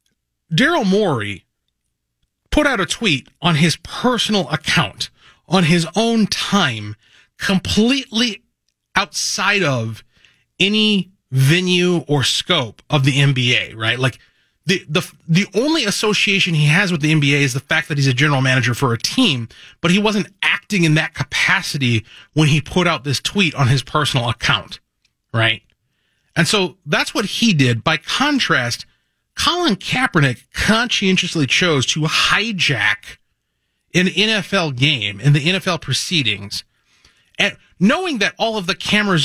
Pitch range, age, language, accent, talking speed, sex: 135-190 Hz, 30-49, English, American, 140 wpm, male